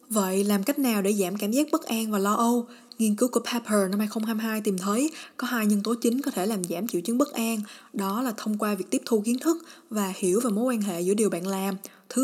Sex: female